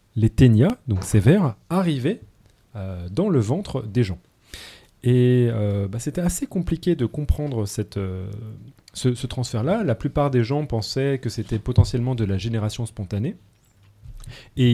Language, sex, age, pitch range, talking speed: French, male, 30-49, 105-140 Hz, 150 wpm